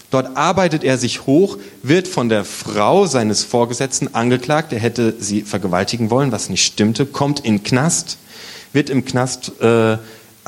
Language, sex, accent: German, male, German